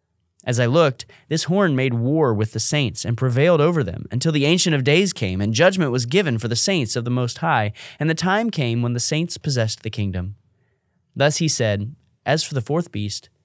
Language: English